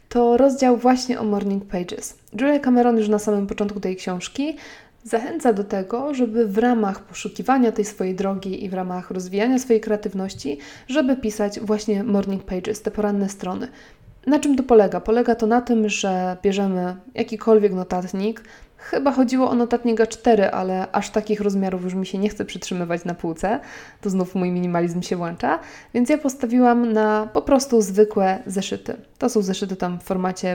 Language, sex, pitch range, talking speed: Polish, female, 190-240 Hz, 170 wpm